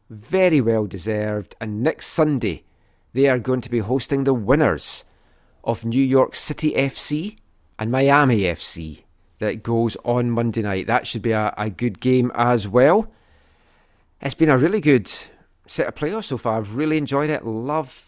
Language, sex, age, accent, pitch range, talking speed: English, male, 40-59, British, 105-135 Hz, 170 wpm